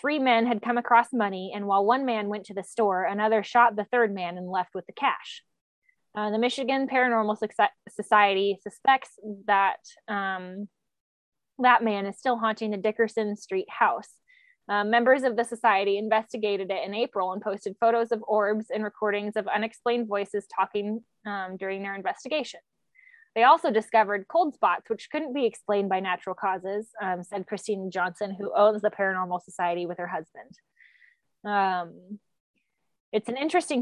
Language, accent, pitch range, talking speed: English, American, 200-240 Hz, 165 wpm